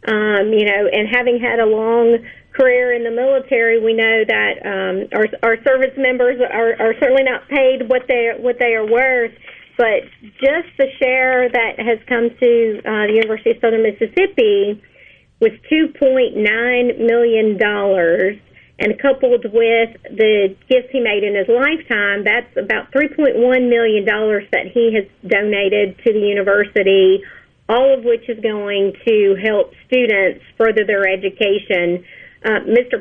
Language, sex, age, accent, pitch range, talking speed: English, female, 40-59, American, 215-255 Hz, 160 wpm